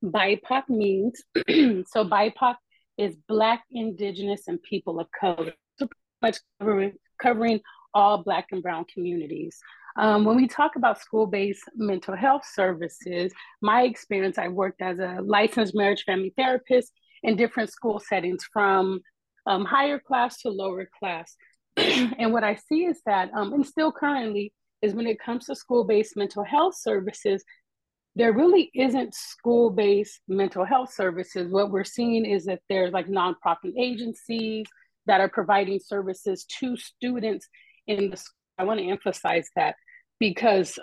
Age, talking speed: 30-49, 145 wpm